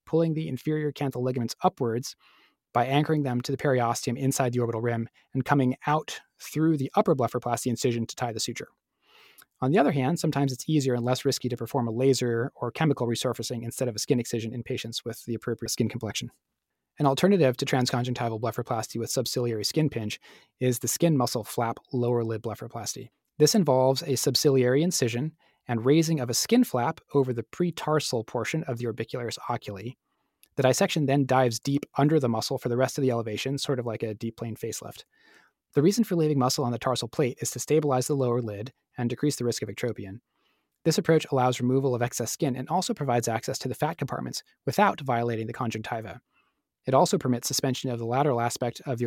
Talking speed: 200 wpm